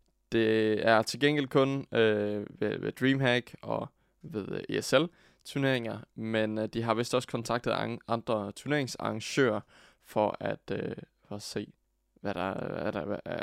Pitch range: 110-135 Hz